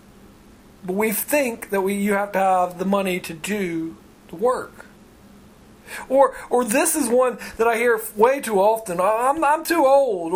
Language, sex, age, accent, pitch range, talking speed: English, male, 40-59, American, 220-310 Hz, 175 wpm